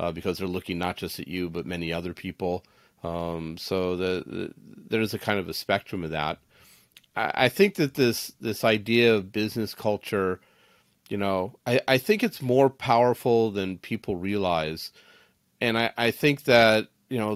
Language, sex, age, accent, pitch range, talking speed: English, male, 40-59, American, 95-115 Hz, 175 wpm